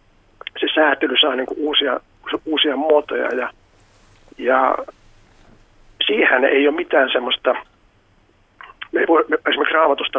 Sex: male